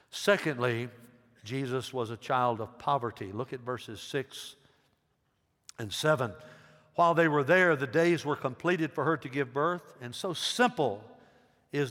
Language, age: English, 60-79